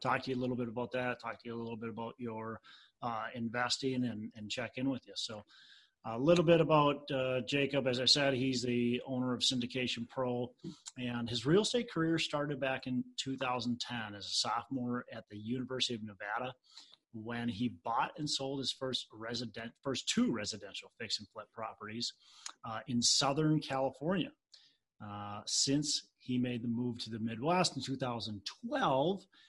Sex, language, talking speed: male, English, 175 wpm